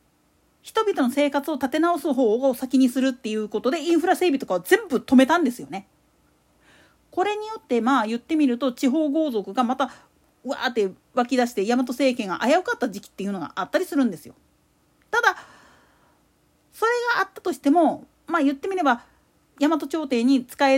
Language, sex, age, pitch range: Japanese, female, 40-59, 245-330 Hz